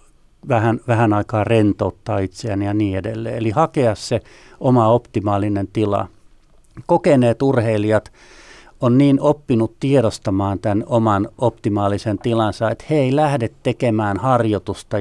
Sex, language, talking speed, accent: male, Finnish, 115 wpm, native